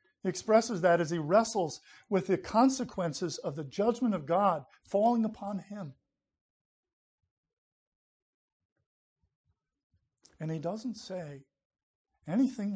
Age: 50-69